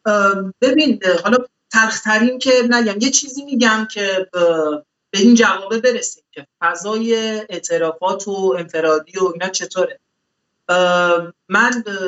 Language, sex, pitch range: Persian, male, 180-235 Hz